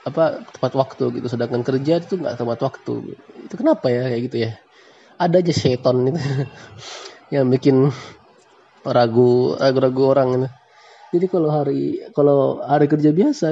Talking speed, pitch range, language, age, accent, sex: 145 wpm, 130-200 Hz, Indonesian, 20-39, native, male